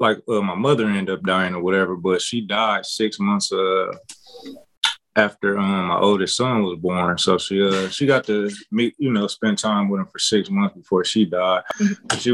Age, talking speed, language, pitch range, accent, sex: 20-39, 205 wpm, English, 95-110 Hz, American, male